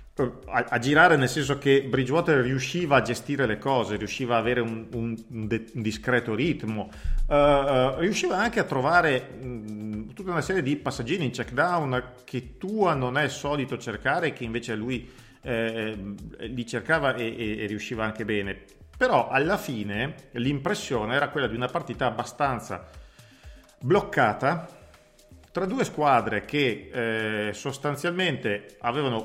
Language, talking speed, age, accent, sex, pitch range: Italian, 150 wpm, 40-59, native, male, 105-135 Hz